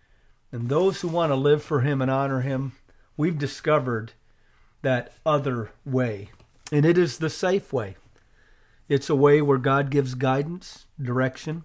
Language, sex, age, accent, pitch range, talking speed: English, male, 40-59, American, 125-155 Hz, 155 wpm